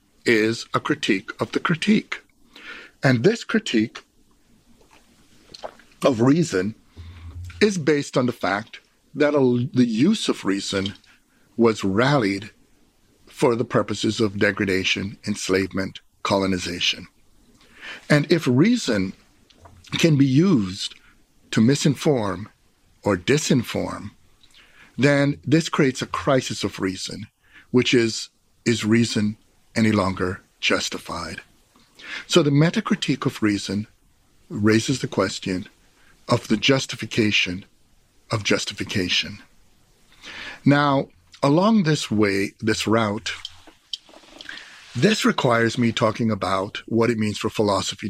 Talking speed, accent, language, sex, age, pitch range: 105 wpm, American, English, male, 60-79, 100-135 Hz